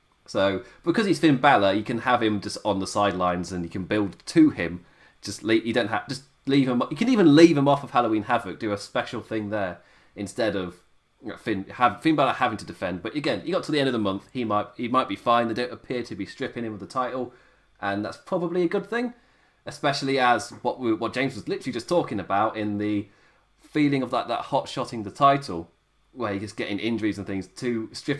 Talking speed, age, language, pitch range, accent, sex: 240 wpm, 30-49, English, 100-135 Hz, British, male